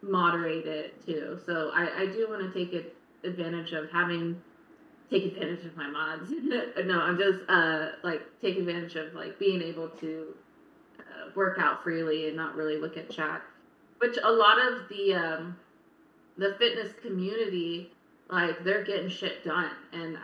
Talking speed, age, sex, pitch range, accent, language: 165 wpm, 20-39, female, 165-215 Hz, American, English